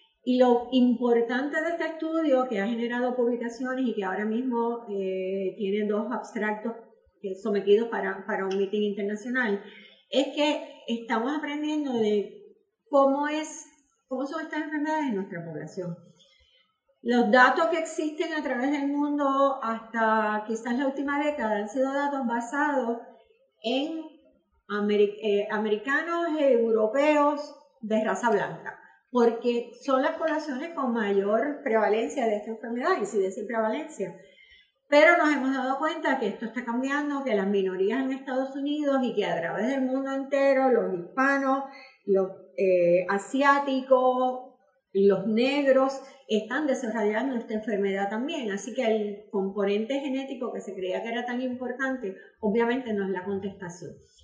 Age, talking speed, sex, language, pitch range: 40-59, 145 wpm, female, Spanish, 210-280 Hz